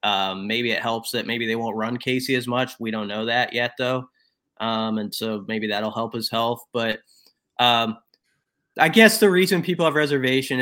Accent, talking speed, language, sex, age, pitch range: American, 200 wpm, English, male, 20-39, 115-135 Hz